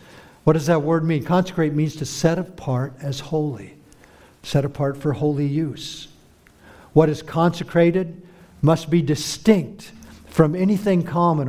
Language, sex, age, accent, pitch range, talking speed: English, male, 60-79, American, 135-170 Hz, 135 wpm